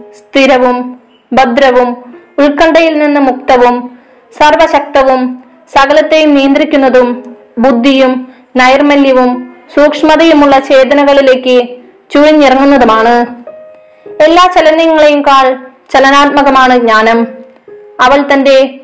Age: 20-39